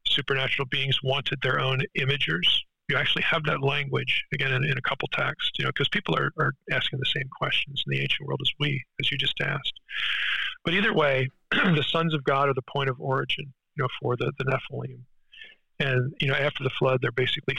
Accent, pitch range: American, 130-150 Hz